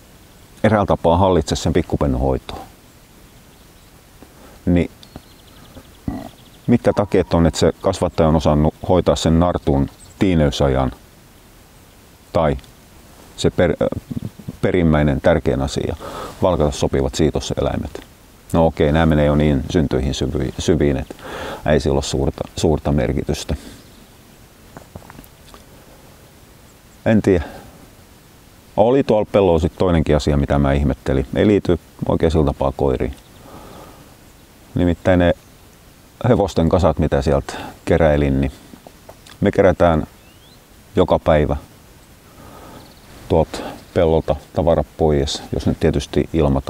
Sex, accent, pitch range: male, native, 70-90 Hz